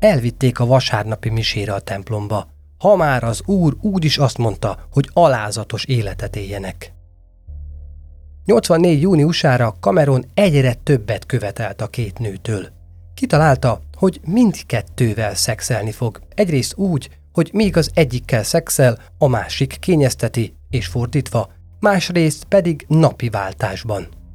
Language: Hungarian